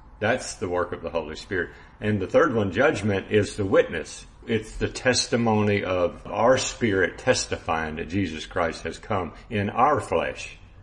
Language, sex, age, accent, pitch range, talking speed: English, male, 50-69, American, 90-110 Hz, 165 wpm